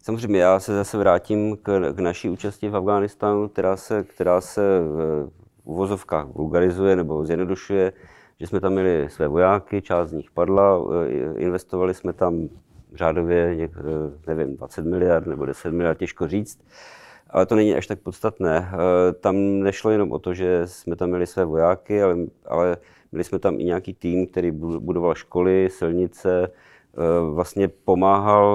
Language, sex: Czech, male